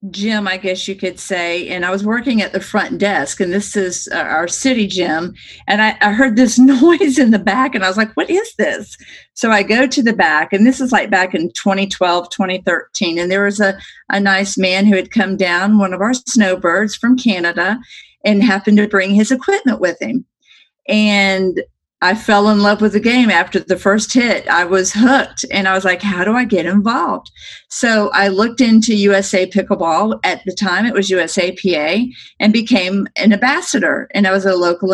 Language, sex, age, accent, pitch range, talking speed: English, female, 50-69, American, 185-225 Hz, 205 wpm